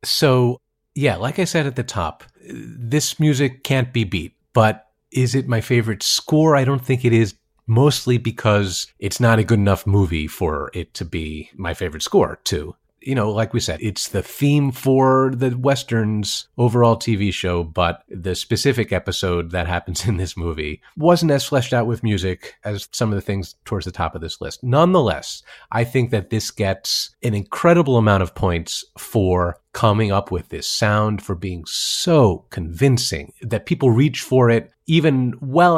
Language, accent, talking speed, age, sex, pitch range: English, American, 180 wpm, 30-49, male, 95-130 Hz